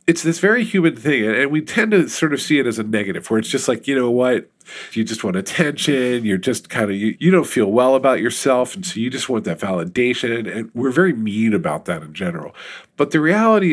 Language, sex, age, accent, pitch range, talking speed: English, male, 40-59, American, 120-180 Hz, 240 wpm